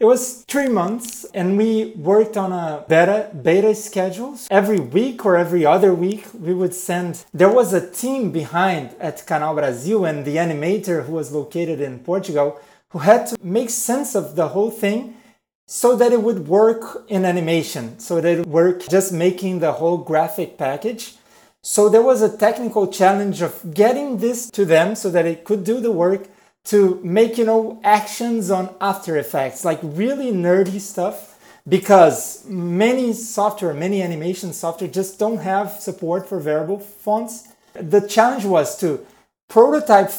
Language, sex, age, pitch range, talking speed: English, male, 30-49, 175-220 Hz, 165 wpm